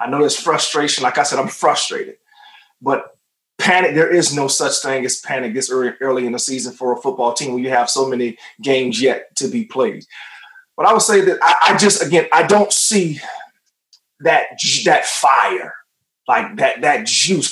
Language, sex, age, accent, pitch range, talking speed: English, male, 30-49, American, 155-210 Hz, 190 wpm